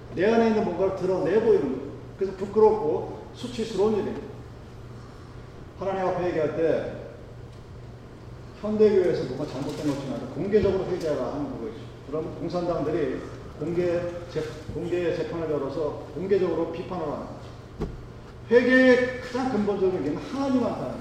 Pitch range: 165-240 Hz